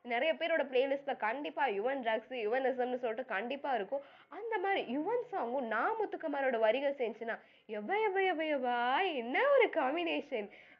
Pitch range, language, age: 225-370 Hz, Tamil, 20-39